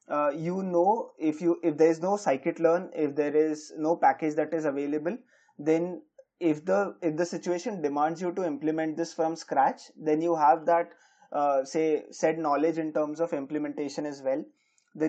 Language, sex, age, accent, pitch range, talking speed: English, male, 20-39, Indian, 150-170 Hz, 185 wpm